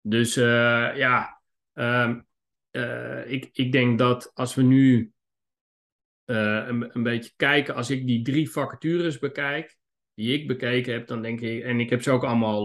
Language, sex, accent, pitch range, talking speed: Dutch, male, Dutch, 110-125 Hz, 170 wpm